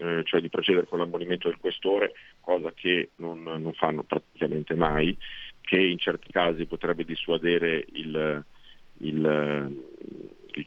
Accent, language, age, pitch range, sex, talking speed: native, Italian, 50-69, 80-90 Hz, male, 130 wpm